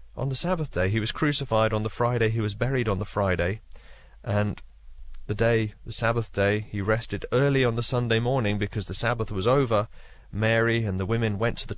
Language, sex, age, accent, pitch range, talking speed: English, male, 30-49, British, 100-130 Hz, 210 wpm